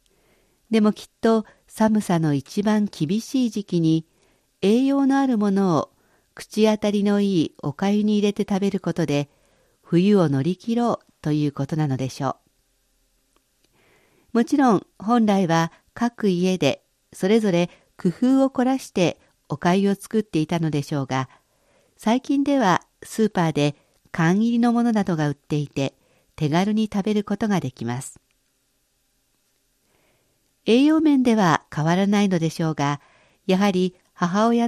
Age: 50-69